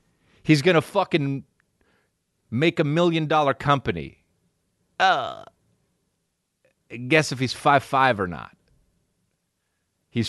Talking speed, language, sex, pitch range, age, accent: 95 wpm, English, male, 100-165 Hz, 30-49, American